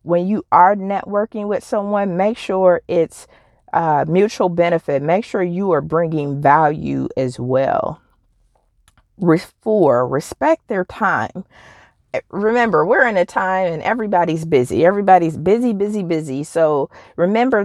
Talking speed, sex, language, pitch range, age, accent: 135 wpm, female, English, 160-200 Hz, 40-59, American